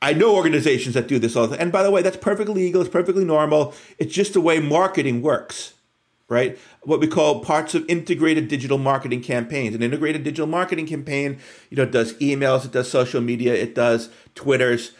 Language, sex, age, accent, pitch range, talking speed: English, male, 50-69, American, 125-165 Hz, 200 wpm